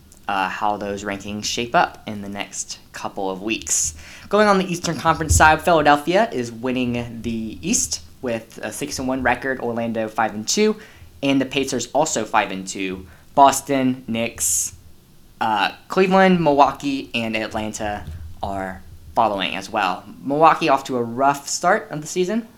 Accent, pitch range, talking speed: American, 100-140 Hz, 145 wpm